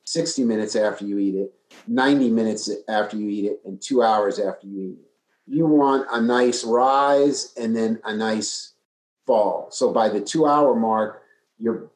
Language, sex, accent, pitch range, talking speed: English, male, American, 105-135 Hz, 175 wpm